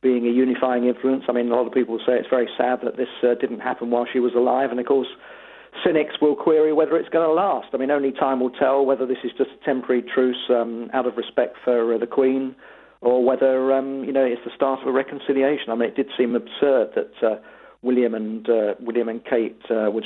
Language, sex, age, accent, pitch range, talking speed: English, male, 40-59, British, 120-130 Hz, 245 wpm